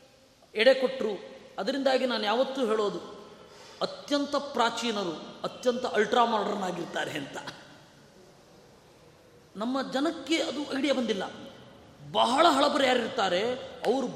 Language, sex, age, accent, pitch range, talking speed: Kannada, female, 20-39, native, 235-295 Hz, 95 wpm